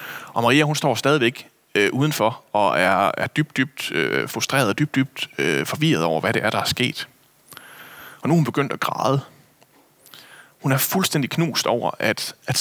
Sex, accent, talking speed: male, native, 190 wpm